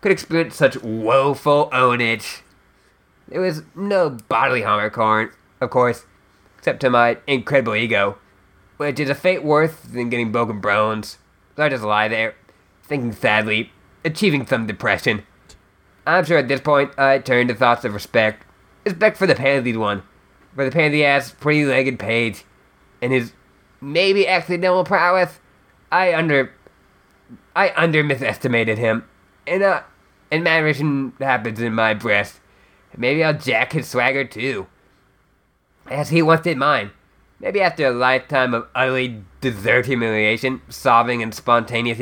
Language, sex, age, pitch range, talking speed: English, male, 20-39, 115-150 Hz, 145 wpm